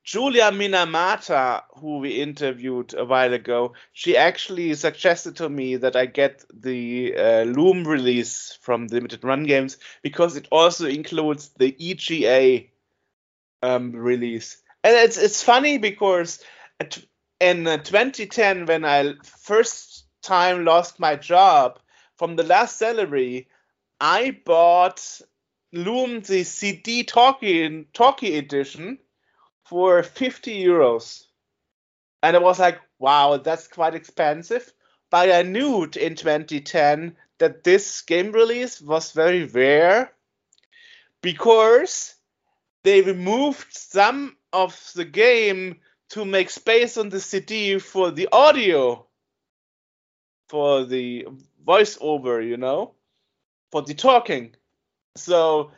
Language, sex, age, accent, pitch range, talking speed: English, male, 30-49, German, 140-205 Hz, 115 wpm